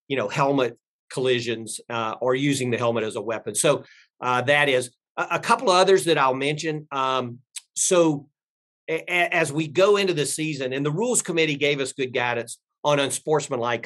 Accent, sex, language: American, male, English